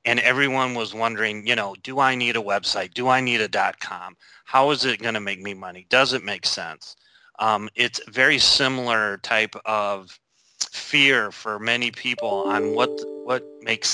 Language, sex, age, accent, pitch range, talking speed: English, male, 30-49, American, 105-120 Hz, 180 wpm